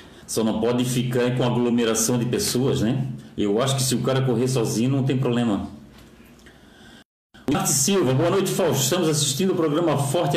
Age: 50-69